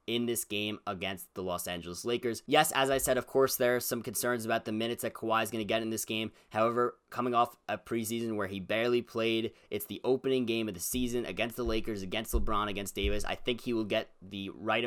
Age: 20-39